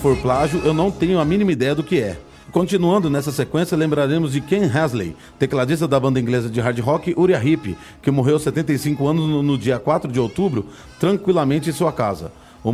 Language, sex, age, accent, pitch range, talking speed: Portuguese, male, 40-59, Brazilian, 130-165 Hz, 195 wpm